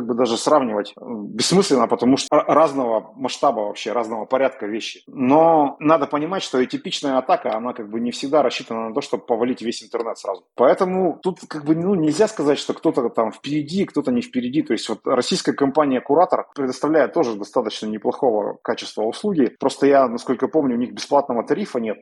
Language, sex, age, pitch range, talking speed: Russian, male, 30-49, 120-160 Hz, 180 wpm